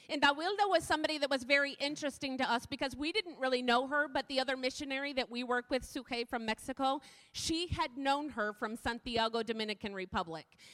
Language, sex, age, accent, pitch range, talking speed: English, female, 30-49, American, 260-320 Hz, 195 wpm